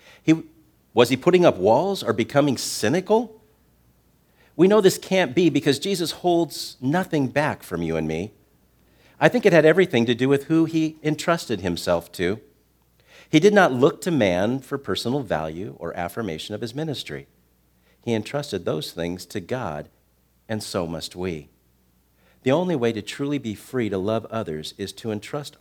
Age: 50-69